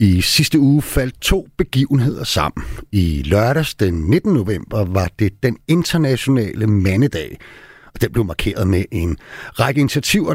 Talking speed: 145 wpm